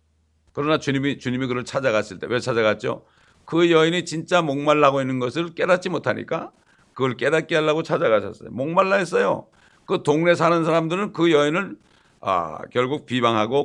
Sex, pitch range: male, 125-170 Hz